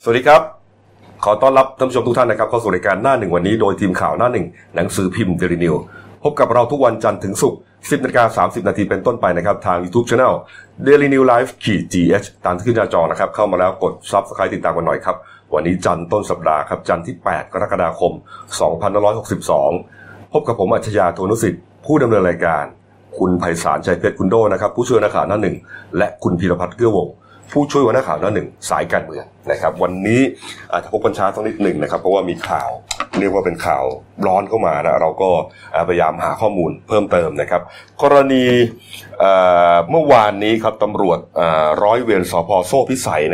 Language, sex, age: Thai, male, 30-49